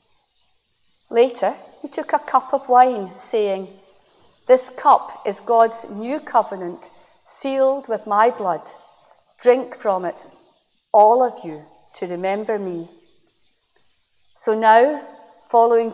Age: 40-59